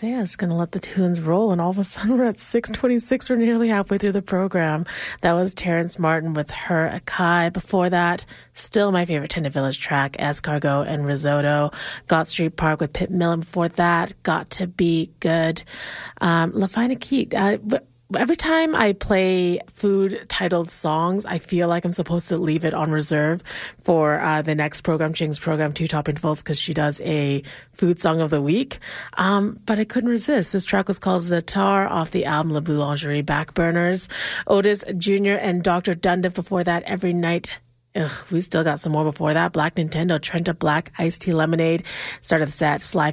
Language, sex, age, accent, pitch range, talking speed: English, female, 30-49, American, 155-190 Hz, 190 wpm